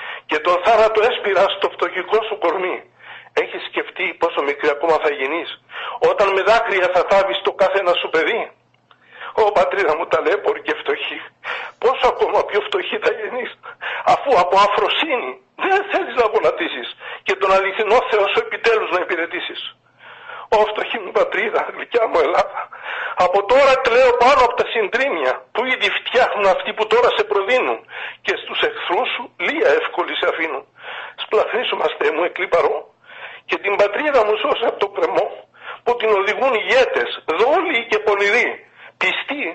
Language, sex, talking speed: Greek, male, 150 wpm